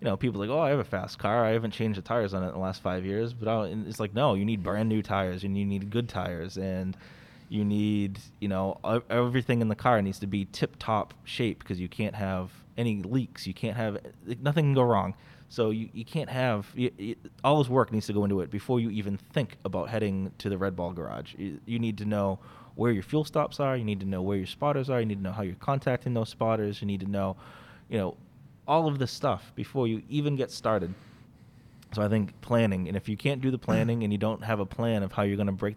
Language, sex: English, male